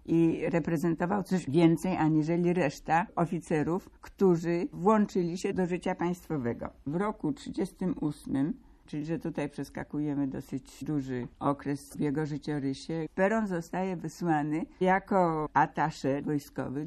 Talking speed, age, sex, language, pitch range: 115 wpm, 60-79, female, Polish, 145-180 Hz